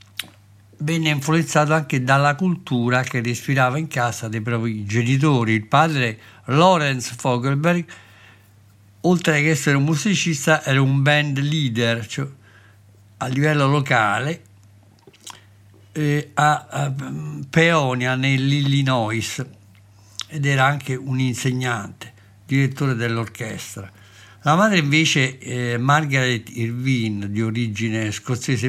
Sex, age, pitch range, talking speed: male, 60-79, 110-145 Hz, 100 wpm